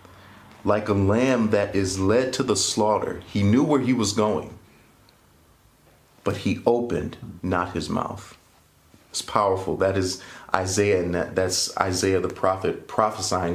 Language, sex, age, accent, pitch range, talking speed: English, male, 30-49, American, 95-120 Hz, 140 wpm